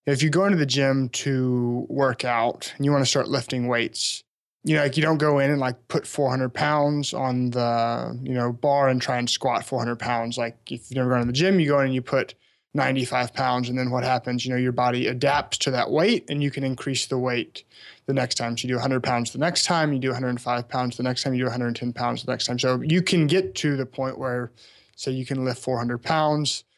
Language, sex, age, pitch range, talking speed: English, male, 20-39, 125-140 Hz, 275 wpm